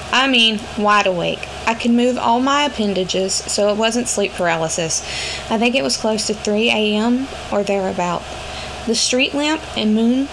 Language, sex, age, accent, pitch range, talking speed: English, female, 20-39, American, 200-240 Hz, 175 wpm